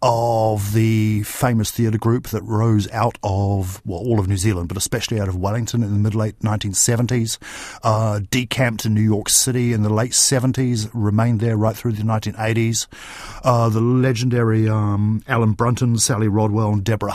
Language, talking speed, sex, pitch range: English, 175 wpm, male, 105-120 Hz